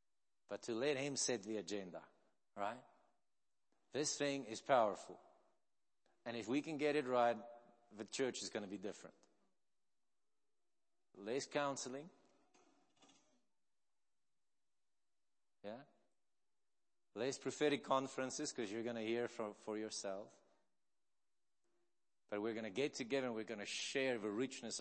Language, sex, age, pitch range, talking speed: English, male, 50-69, 115-135 Hz, 130 wpm